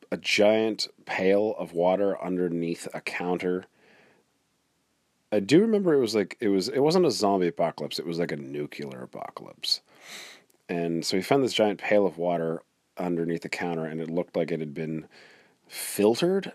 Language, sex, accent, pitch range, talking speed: English, male, American, 85-110 Hz, 170 wpm